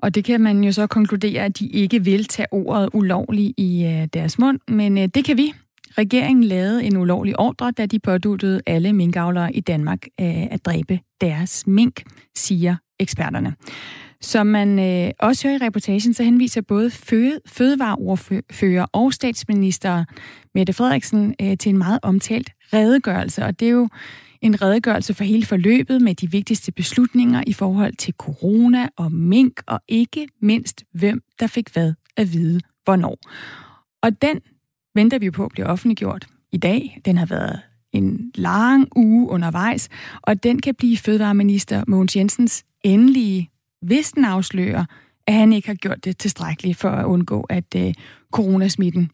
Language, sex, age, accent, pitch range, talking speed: Danish, female, 30-49, native, 185-230 Hz, 155 wpm